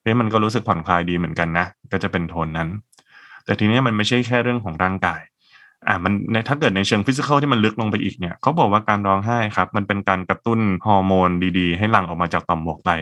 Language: Thai